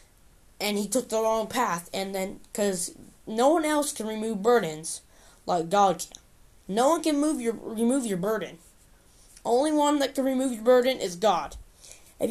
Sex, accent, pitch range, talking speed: female, American, 225-280 Hz, 175 wpm